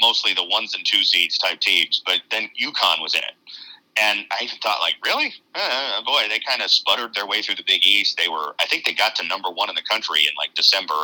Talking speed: 250 wpm